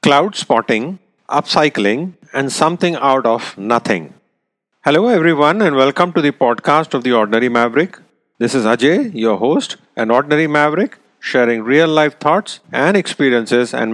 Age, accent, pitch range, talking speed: 40-59, Indian, 120-160 Hz, 140 wpm